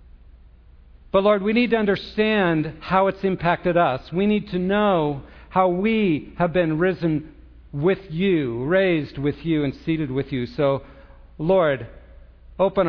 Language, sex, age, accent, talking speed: English, male, 50-69, American, 145 wpm